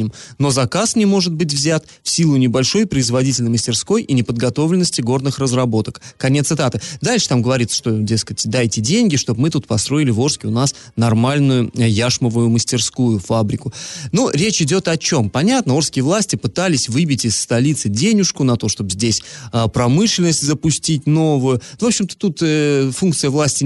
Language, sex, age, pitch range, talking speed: Russian, male, 20-39, 120-155 Hz, 155 wpm